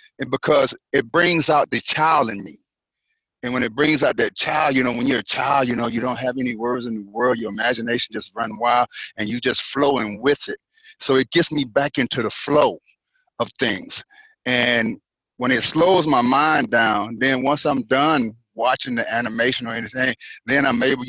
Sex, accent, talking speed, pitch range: male, American, 205 wpm, 110-130 Hz